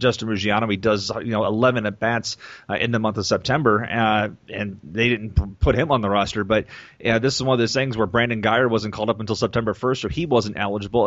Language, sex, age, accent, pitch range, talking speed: English, male, 30-49, American, 105-120 Hz, 240 wpm